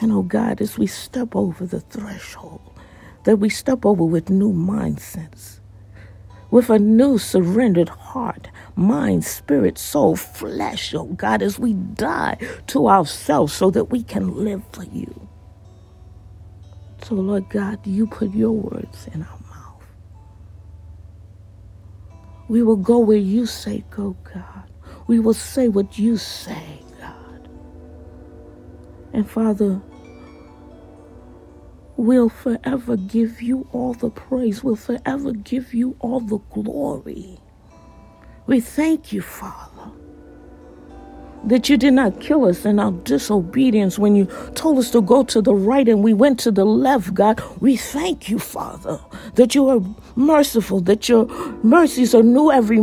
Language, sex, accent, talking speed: English, female, American, 140 wpm